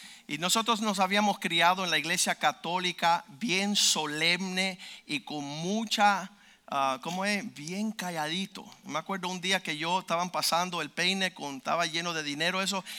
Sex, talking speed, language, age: male, 150 wpm, Spanish, 50-69